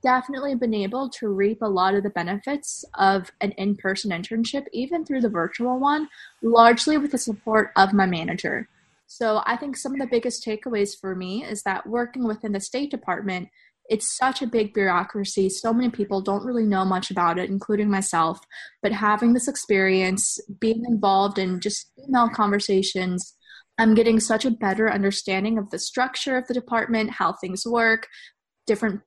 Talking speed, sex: 175 wpm, female